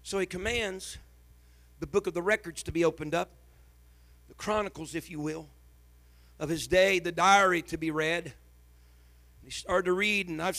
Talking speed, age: 180 wpm, 50-69